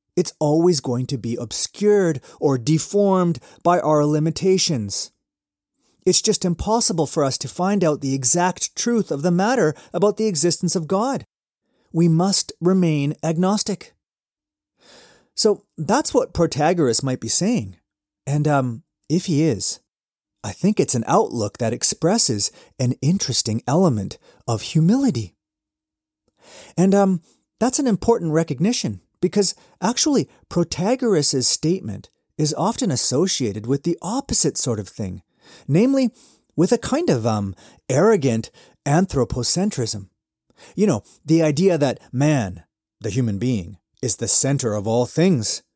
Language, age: English, 30-49